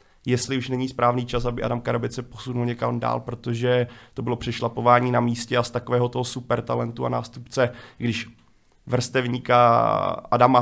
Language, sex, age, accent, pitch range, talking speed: Czech, male, 30-49, native, 120-130 Hz, 165 wpm